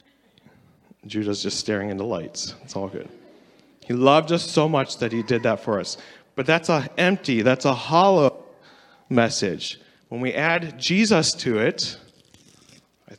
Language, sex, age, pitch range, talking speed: English, male, 30-49, 110-160 Hz, 155 wpm